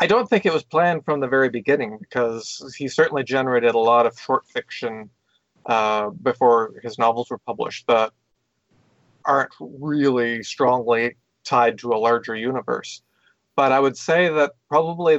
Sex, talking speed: male, 160 wpm